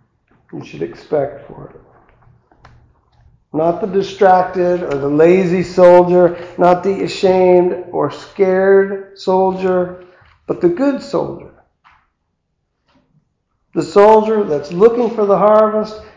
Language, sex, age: English, male, 50-69